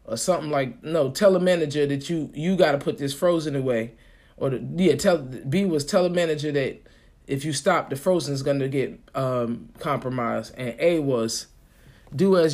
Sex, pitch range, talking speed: male, 130-170 Hz, 200 wpm